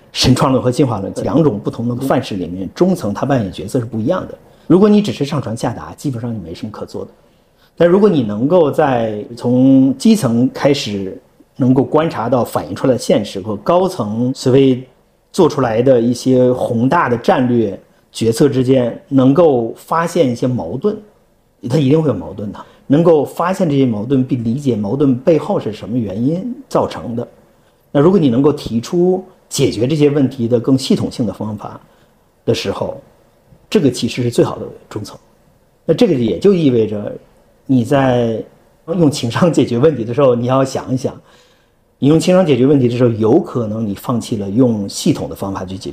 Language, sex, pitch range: Chinese, male, 115-145 Hz